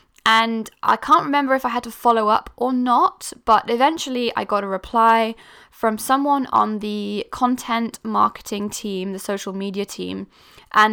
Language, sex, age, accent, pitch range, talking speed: English, female, 10-29, British, 205-255 Hz, 165 wpm